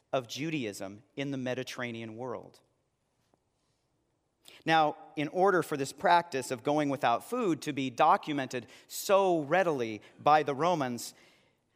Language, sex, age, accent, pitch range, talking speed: English, male, 40-59, American, 135-185 Hz, 125 wpm